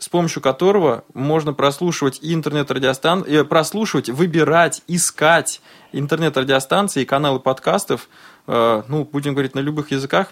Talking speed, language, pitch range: 115 wpm, Russian, 130-160 Hz